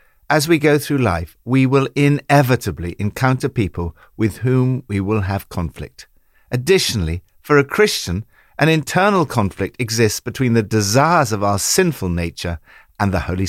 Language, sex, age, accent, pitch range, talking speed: English, male, 60-79, British, 95-155 Hz, 150 wpm